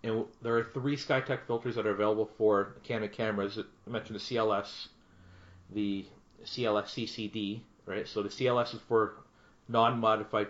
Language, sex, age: English, male, 40-59